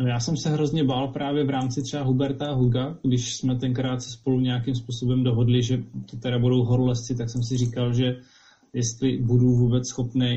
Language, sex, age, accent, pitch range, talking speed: Czech, male, 20-39, native, 120-135 Hz, 195 wpm